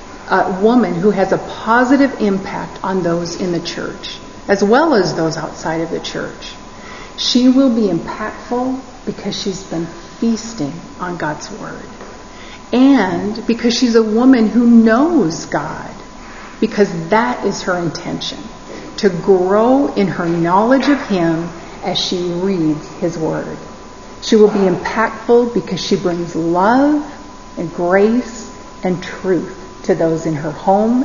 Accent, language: American, English